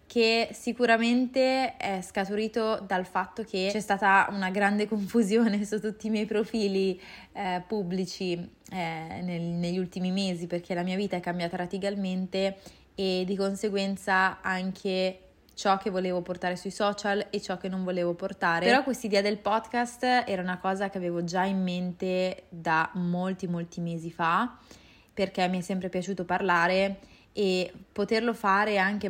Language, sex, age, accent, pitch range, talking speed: Italian, female, 20-39, native, 180-215 Hz, 150 wpm